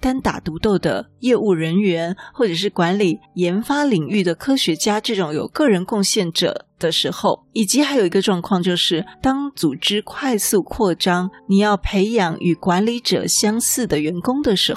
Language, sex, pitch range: Chinese, female, 175-220 Hz